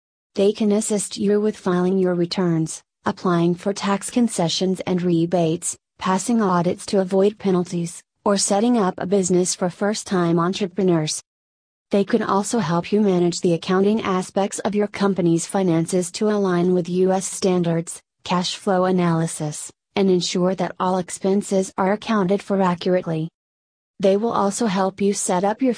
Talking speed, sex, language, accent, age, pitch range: 155 wpm, female, English, American, 30-49, 175-200 Hz